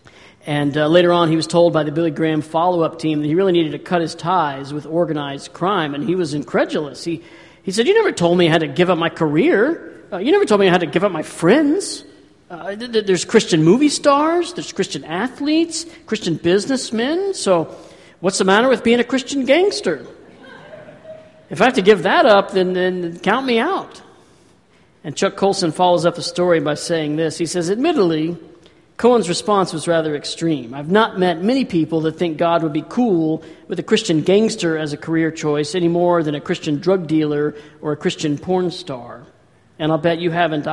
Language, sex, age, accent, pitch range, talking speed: Italian, male, 50-69, American, 155-195 Hz, 205 wpm